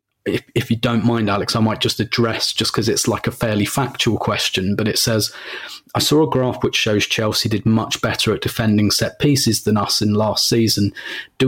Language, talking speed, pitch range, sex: English, 215 wpm, 105-120 Hz, male